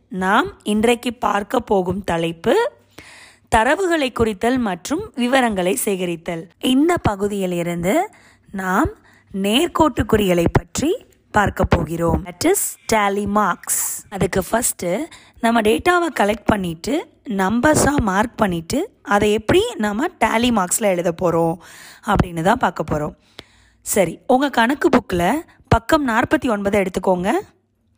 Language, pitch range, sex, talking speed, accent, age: Tamil, 190-275 Hz, female, 105 wpm, native, 20-39